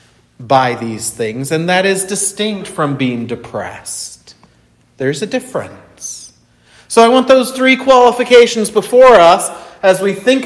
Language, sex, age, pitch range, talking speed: English, male, 40-59, 125-190 Hz, 140 wpm